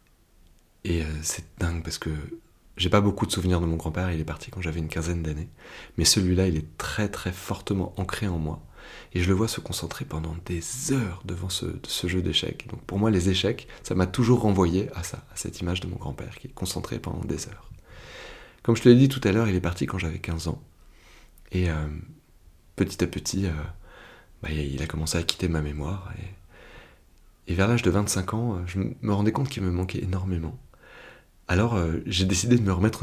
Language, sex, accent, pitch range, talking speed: French, male, French, 80-100 Hz, 220 wpm